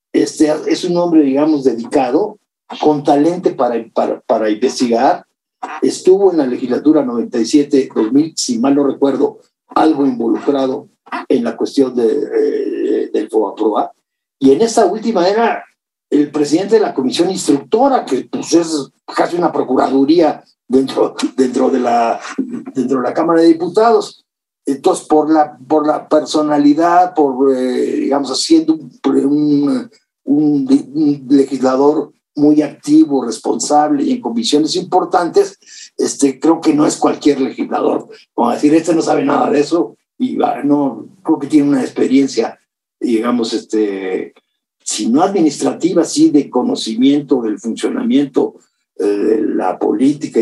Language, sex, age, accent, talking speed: Spanish, male, 50-69, Mexican, 140 wpm